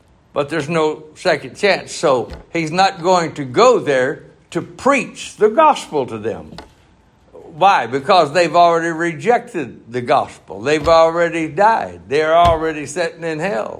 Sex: male